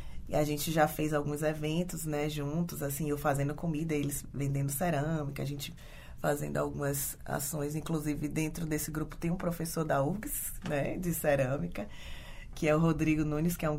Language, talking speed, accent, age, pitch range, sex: Portuguese, 175 wpm, Brazilian, 20-39, 150-220 Hz, female